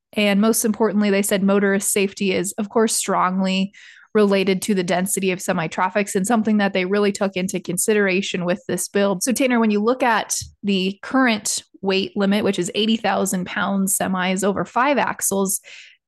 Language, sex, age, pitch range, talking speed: English, female, 20-39, 190-225 Hz, 170 wpm